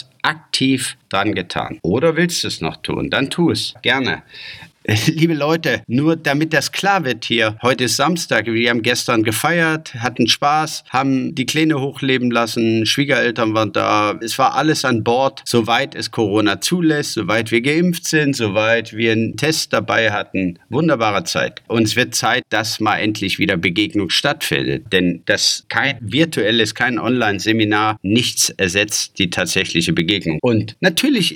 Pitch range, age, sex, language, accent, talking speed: 110-140 Hz, 50-69, male, German, German, 155 wpm